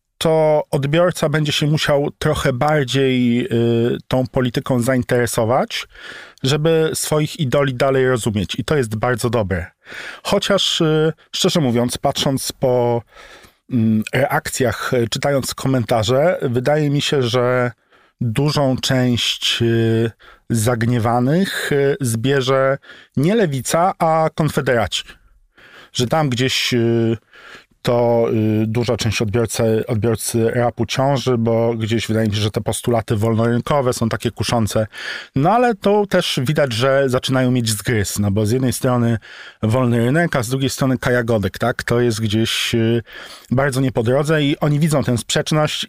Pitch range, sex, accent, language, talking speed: 115-140 Hz, male, native, Polish, 125 wpm